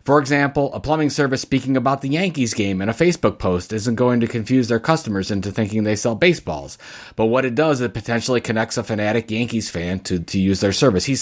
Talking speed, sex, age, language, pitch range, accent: 225 wpm, male, 30-49, English, 120-195 Hz, American